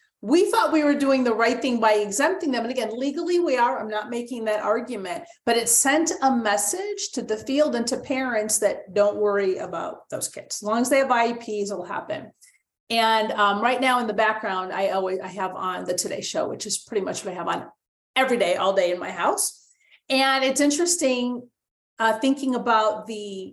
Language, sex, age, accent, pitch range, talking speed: English, female, 40-59, American, 210-270 Hz, 215 wpm